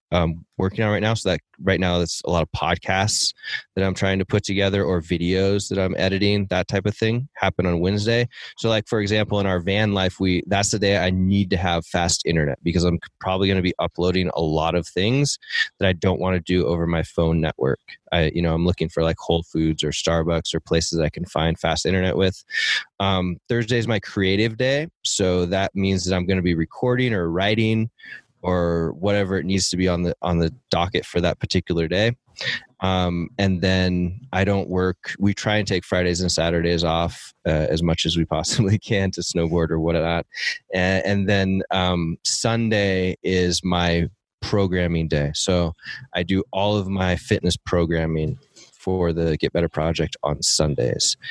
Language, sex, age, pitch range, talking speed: English, male, 20-39, 85-100 Hz, 200 wpm